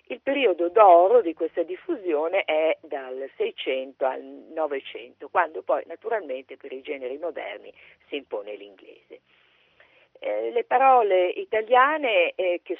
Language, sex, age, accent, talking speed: Italian, female, 50-69, native, 120 wpm